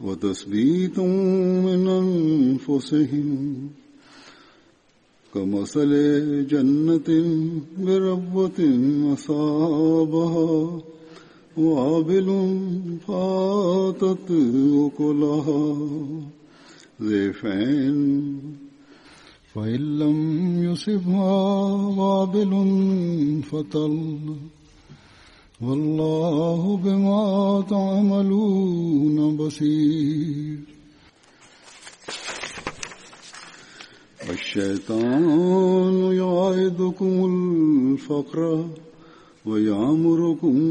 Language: Bulgarian